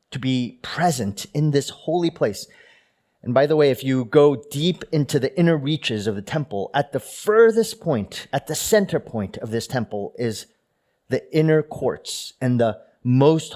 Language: English